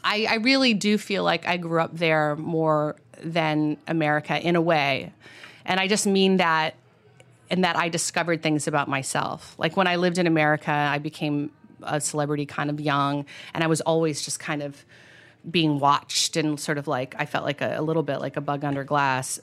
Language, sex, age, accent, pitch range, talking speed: English, female, 30-49, American, 145-170 Hz, 205 wpm